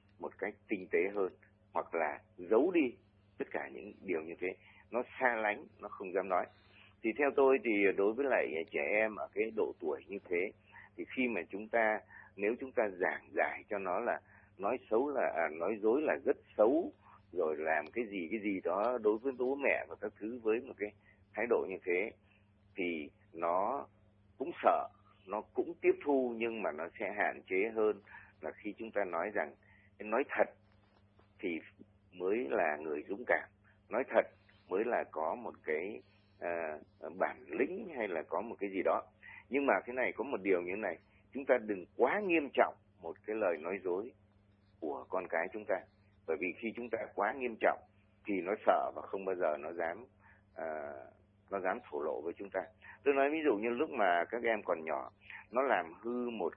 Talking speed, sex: 200 wpm, male